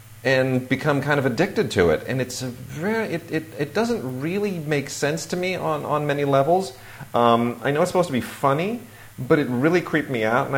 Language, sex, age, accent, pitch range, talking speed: English, male, 40-59, American, 105-135 Hz, 220 wpm